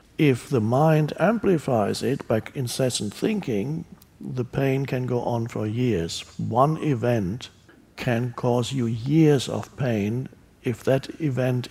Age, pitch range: 60-79, 125-165 Hz